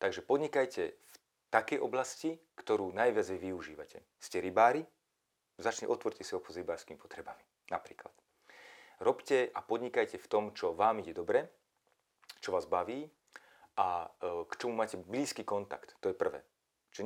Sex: male